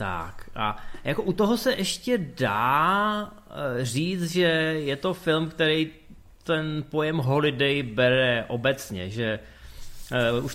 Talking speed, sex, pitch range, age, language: 120 wpm, male, 120-155 Hz, 20-39, Czech